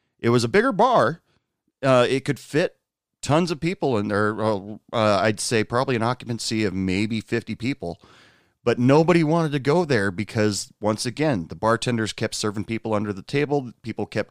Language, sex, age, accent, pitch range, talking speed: English, male, 40-59, American, 105-135 Hz, 180 wpm